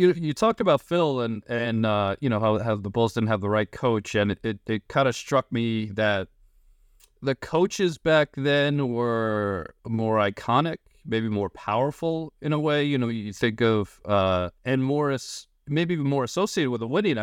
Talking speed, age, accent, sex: 190 wpm, 30-49, American, male